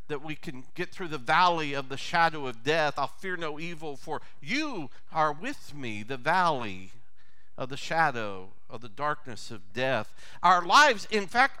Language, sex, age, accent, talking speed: English, male, 50-69, American, 180 wpm